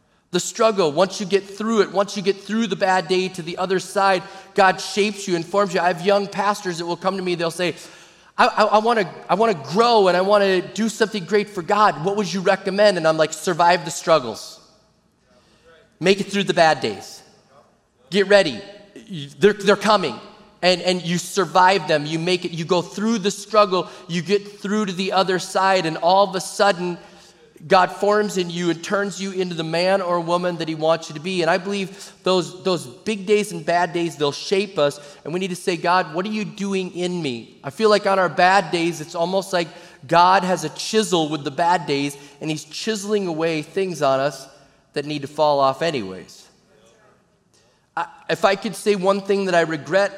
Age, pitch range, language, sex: 30-49, 165-200 Hz, English, male